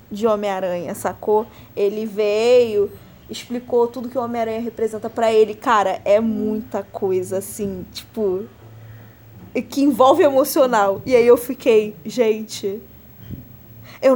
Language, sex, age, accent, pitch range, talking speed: Portuguese, female, 10-29, Brazilian, 210-290 Hz, 120 wpm